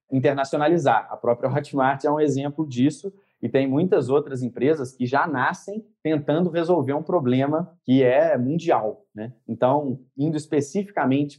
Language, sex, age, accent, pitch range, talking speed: Portuguese, male, 20-39, Brazilian, 120-145 Hz, 140 wpm